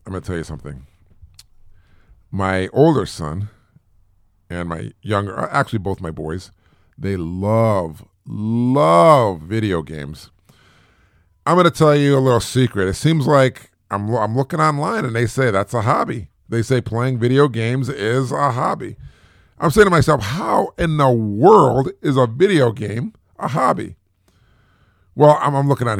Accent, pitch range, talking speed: American, 90-130 Hz, 160 wpm